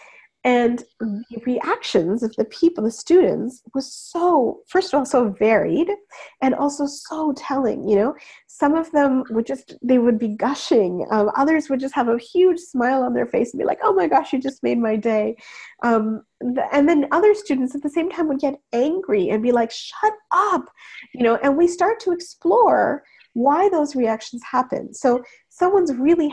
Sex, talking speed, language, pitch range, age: female, 190 wpm, English, 230-330 Hz, 40-59